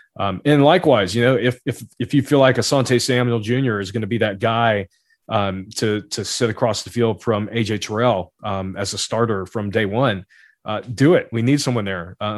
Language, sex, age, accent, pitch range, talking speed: English, male, 30-49, American, 110-130 Hz, 220 wpm